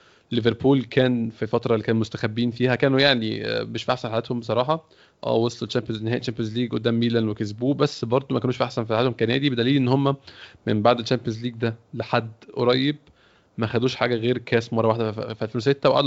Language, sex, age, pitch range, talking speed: Arabic, male, 20-39, 115-130 Hz, 195 wpm